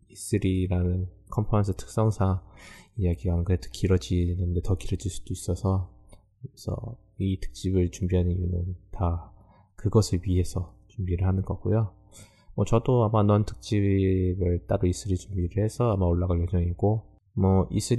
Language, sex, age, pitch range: Korean, male, 20-39, 90-105 Hz